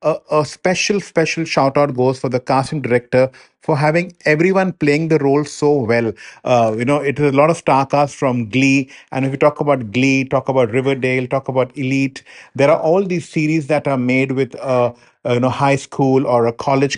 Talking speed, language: 210 wpm, English